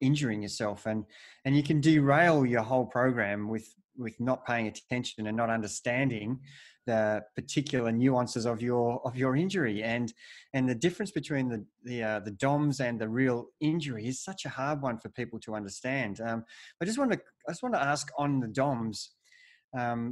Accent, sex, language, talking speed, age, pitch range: Australian, male, English, 190 wpm, 20-39, 115-150 Hz